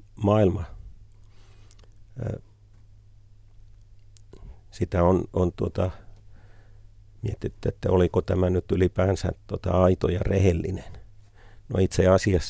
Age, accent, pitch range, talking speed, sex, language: 50-69, native, 90-105 Hz, 75 wpm, male, Finnish